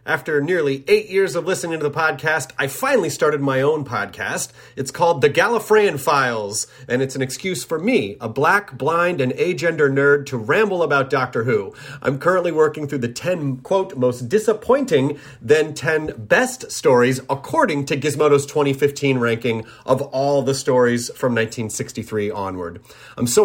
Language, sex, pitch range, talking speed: English, male, 120-165 Hz, 165 wpm